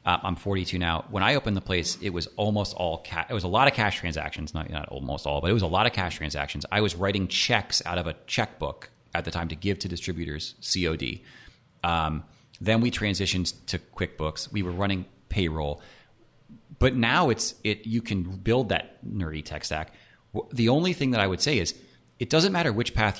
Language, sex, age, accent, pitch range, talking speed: English, male, 30-49, American, 85-110 Hz, 215 wpm